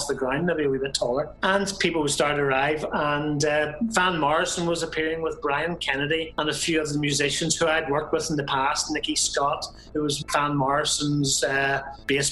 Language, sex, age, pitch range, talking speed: English, male, 30-49, 140-170 Hz, 210 wpm